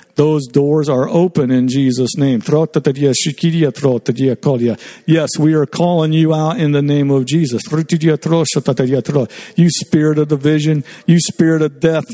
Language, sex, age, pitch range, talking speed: English, male, 50-69, 125-165 Hz, 130 wpm